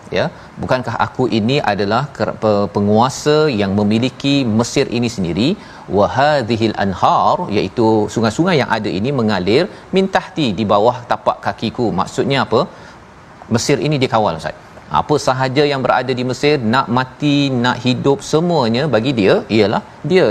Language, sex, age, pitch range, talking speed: Malayalam, male, 40-59, 110-140 Hz, 135 wpm